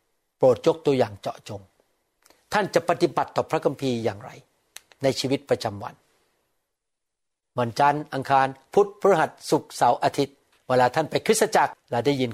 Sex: male